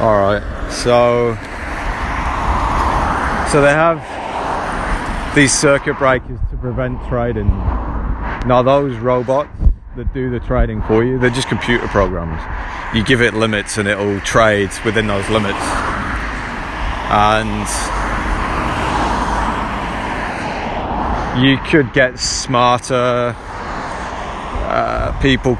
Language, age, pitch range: English, 30-49, 95-125 Hz